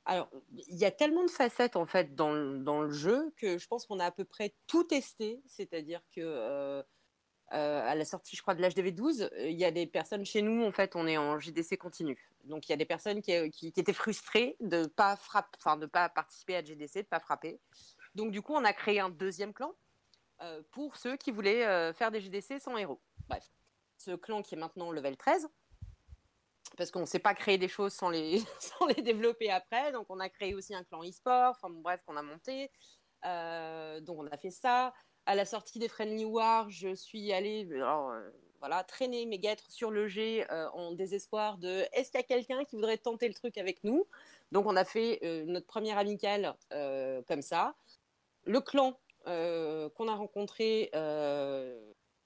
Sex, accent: female, French